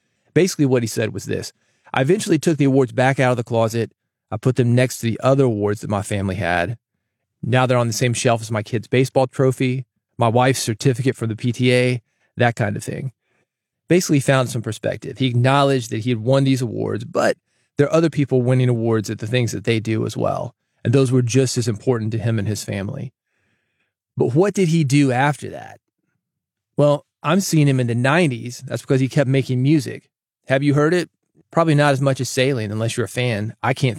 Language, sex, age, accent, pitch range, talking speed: English, male, 30-49, American, 115-135 Hz, 215 wpm